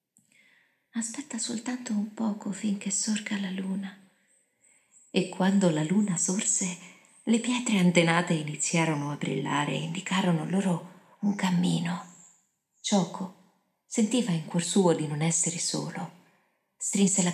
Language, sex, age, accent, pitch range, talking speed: Italian, female, 40-59, native, 160-195 Hz, 120 wpm